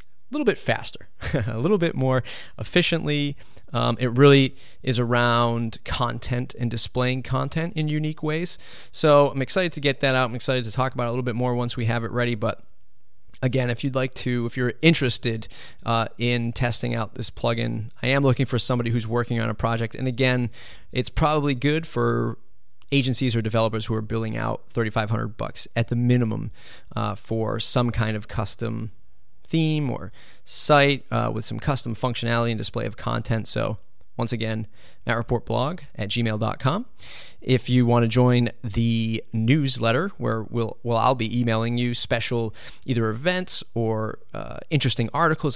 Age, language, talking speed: 30-49, English, 170 wpm